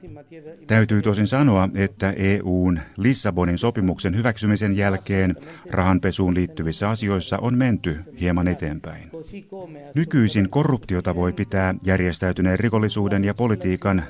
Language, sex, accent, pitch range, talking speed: Finnish, male, native, 95-120 Hz, 100 wpm